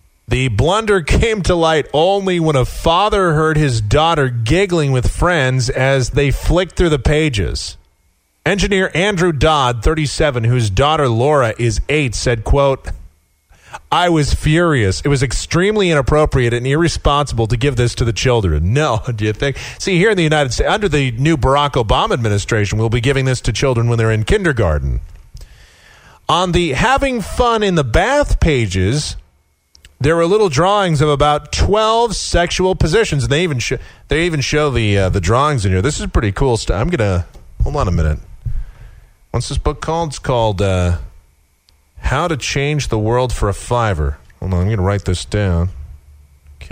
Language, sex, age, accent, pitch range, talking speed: English, male, 40-59, American, 95-155 Hz, 180 wpm